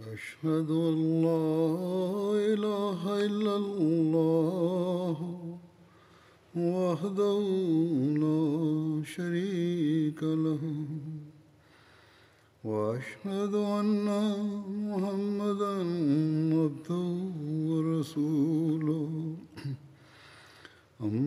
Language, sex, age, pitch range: Tamil, male, 60-79, 155-195 Hz